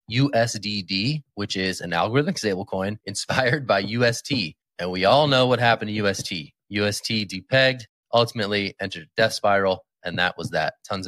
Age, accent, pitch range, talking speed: 20-39, American, 95-130 Hz, 155 wpm